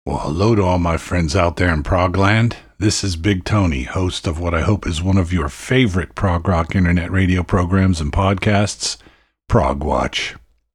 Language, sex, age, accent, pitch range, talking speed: English, male, 50-69, American, 85-105 Hz, 185 wpm